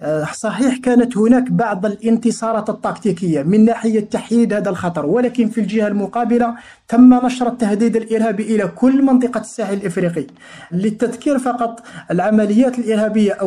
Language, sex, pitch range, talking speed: Arabic, male, 195-235 Hz, 125 wpm